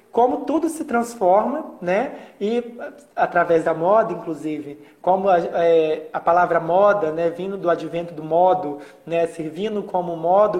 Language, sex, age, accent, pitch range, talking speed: Portuguese, male, 20-39, Brazilian, 170-195 Hz, 155 wpm